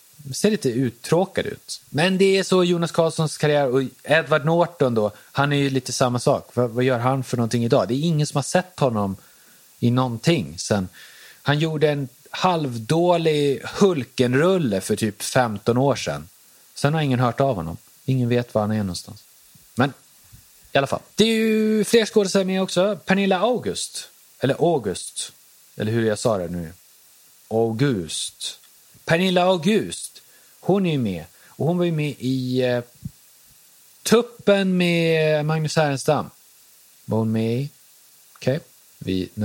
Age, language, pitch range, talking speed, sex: 30-49, Swedish, 120-165 Hz, 155 wpm, male